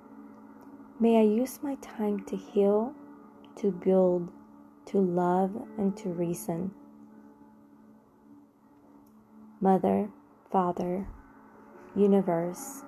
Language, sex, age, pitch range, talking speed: English, female, 20-39, 175-225 Hz, 80 wpm